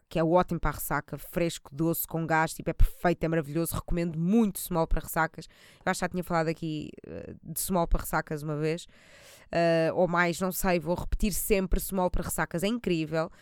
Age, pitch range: 20-39, 165-190 Hz